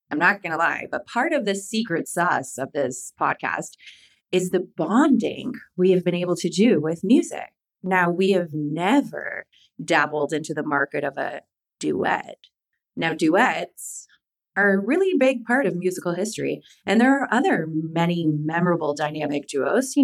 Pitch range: 170-260 Hz